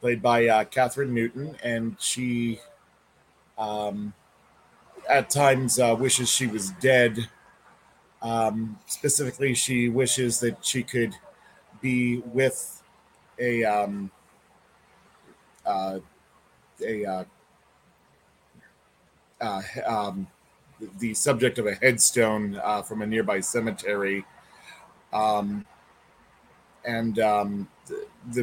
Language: English